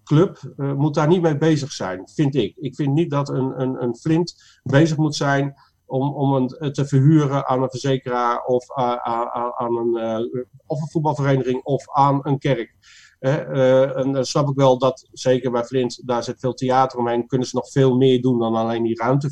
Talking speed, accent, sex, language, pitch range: 210 wpm, Dutch, male, Dutch, 125-150 Hz